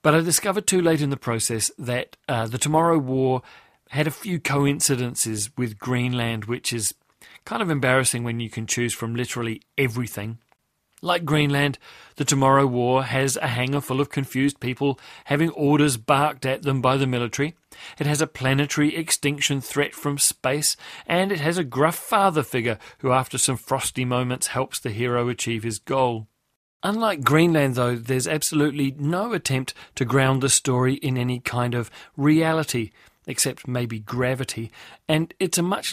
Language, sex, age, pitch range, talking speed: English, male, 40-59, 125-150 Hz, 165 wpm